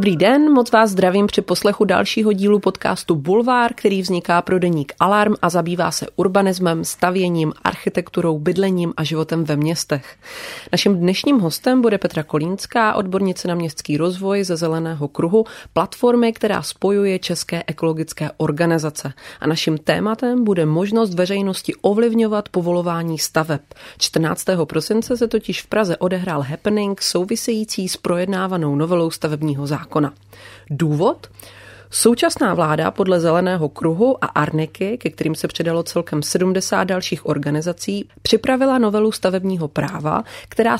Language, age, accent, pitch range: Czech, 30-49, native, 160-210 Hz